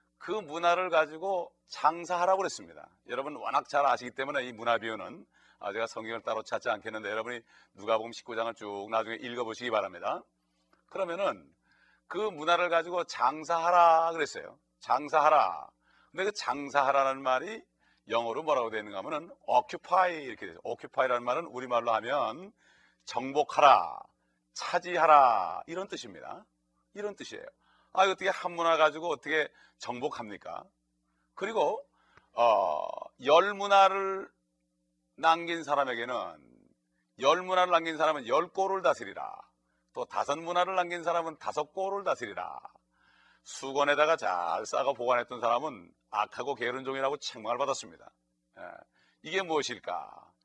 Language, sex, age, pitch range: Korean, male, 40-59, 110-170 Hz